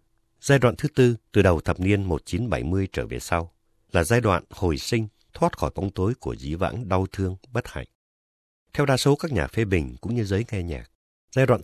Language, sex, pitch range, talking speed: Vietnamese, male, 80-115 Hz, 215 wpm